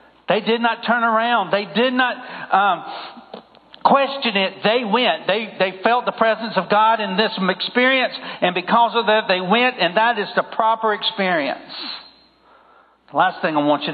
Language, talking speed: English, 175 wpm